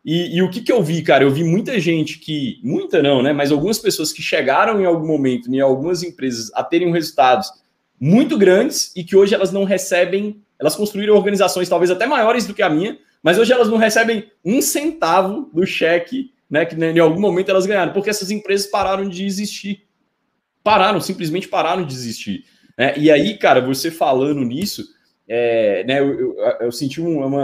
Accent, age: Brazilian, 20-39